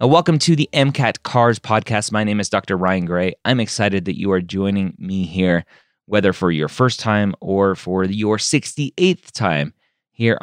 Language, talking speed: English, 180 wpm